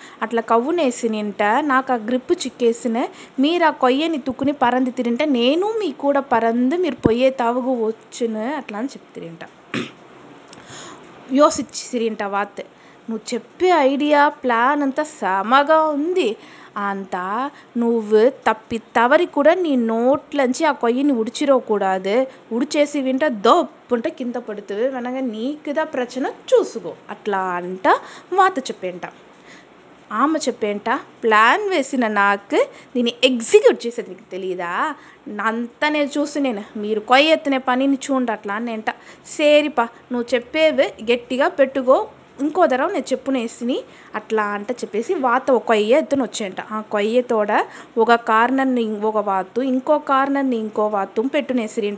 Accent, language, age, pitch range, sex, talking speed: native, Telugu, 20-39, 220-285 Hz, female, 120 wpm